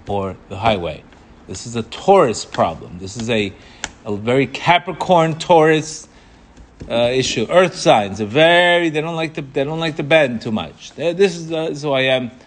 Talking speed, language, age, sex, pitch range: 190 wpm, English, 30-49, male, 110-160 Hz